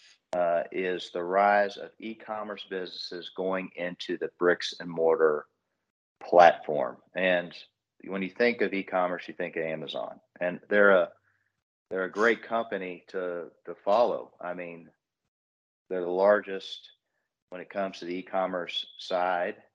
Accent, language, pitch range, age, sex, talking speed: American, English, 85-100 Hz, 40-59, male, 140 wpm